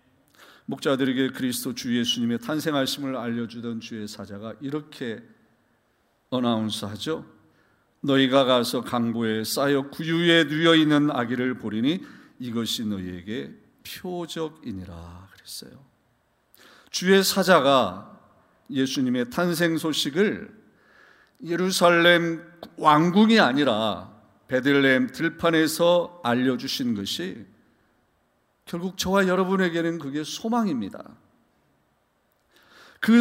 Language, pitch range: Korean, 130-210 Hz